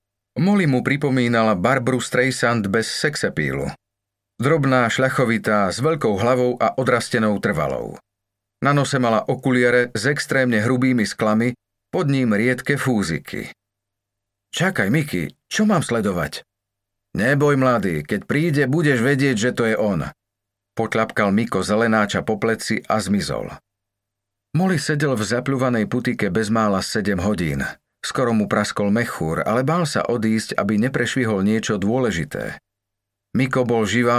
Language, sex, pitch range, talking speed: Slovak, male, 100-130 Hz, 130 wpm